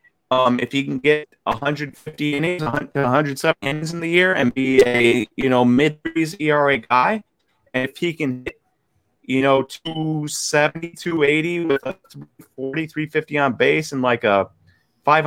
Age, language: 30-49, English